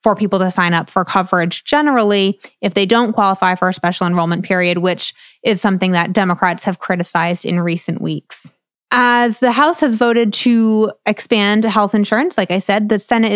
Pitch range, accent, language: 185-220 Hz, American, English